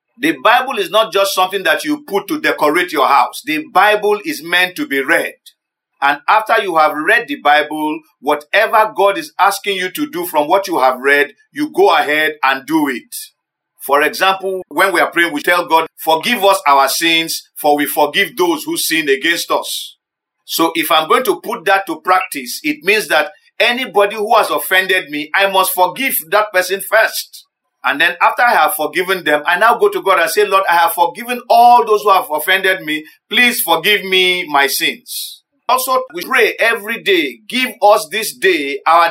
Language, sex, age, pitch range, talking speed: English, male, 50-69, 175-250 Hz, 195 wpm